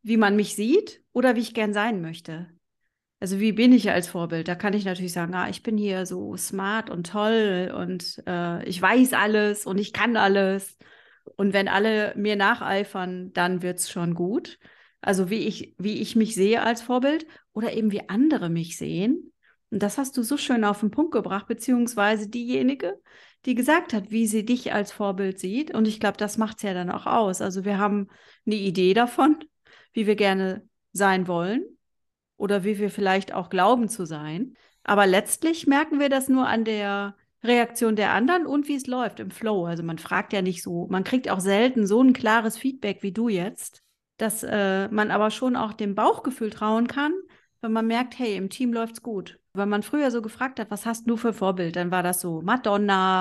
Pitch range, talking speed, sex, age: 190-240 Hz, 205 wpm, female, 30-49